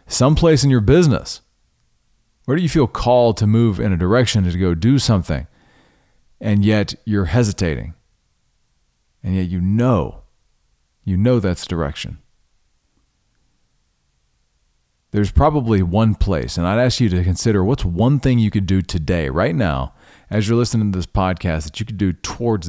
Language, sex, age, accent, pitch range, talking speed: English, male, 40-59, American, 90-115 Hz, 160 wpm